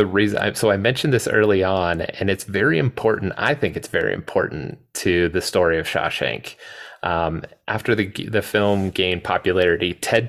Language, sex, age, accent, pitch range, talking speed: English, male, 30-49, American, 90-110 Hz, 175 wpm